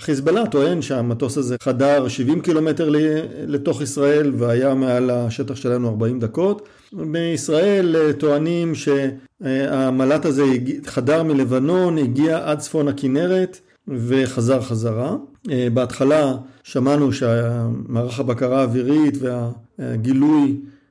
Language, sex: Hebrew, male